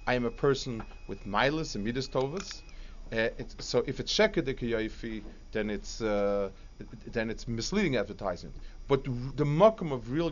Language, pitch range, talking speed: English, 115-155 Hz, 145 wpm